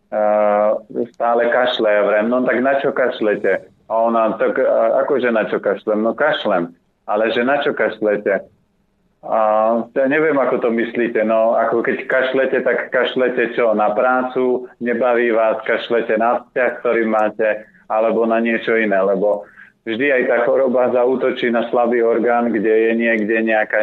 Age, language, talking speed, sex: 30-49, Slovak, 150 wpm, male